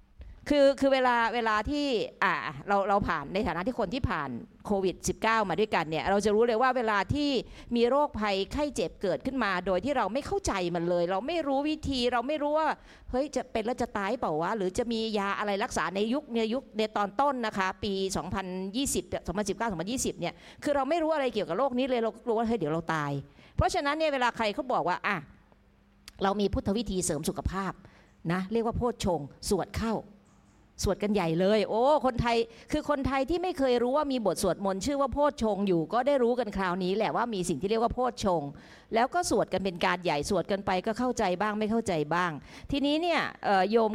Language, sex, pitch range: Thai, female, 190-255 Hz